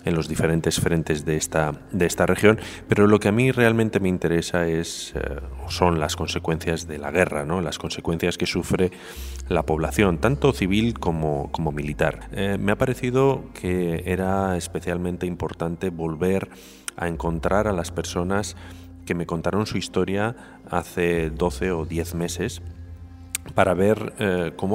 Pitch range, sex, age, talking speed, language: 80-95 Hz, male, 30-49, 160 wpm, Spanish